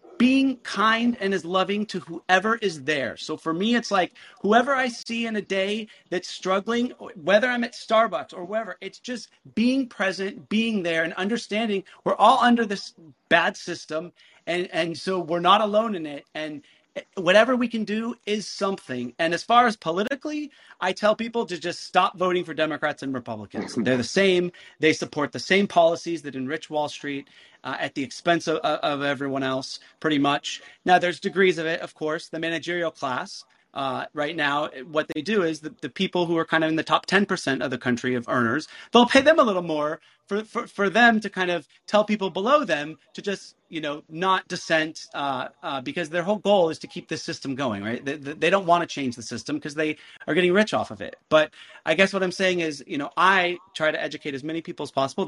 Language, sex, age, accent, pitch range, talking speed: English, male, 30-49, American, 150-205 Hz, 215 wpm